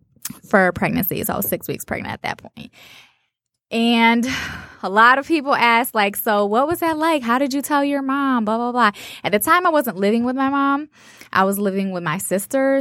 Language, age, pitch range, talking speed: English, 20-39, 175-240 Hz, 220 wpm